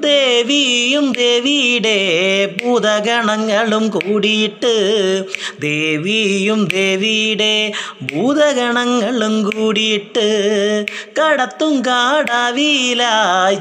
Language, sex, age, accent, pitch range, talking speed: Malayalam, male, 20-39, native, 200-230 Hz, 45 wpm